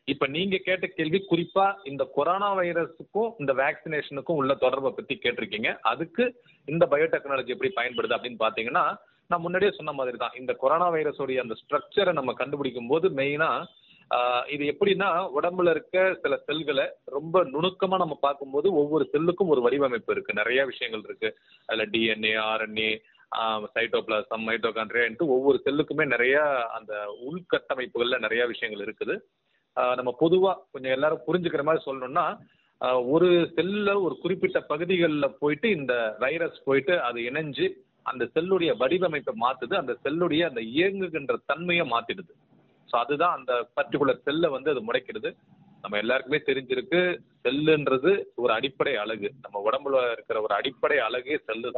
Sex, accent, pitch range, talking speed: male, Indian, 130-185 Hz, 120 wpm